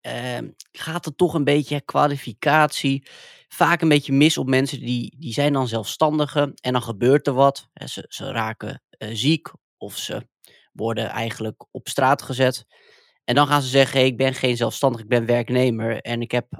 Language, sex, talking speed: English, male, 180 wpm